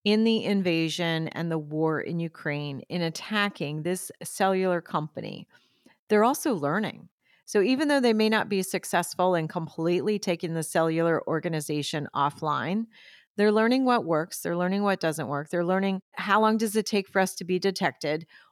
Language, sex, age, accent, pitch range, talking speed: English, female, 40-59, American, 170-210 Hz, 170 wpm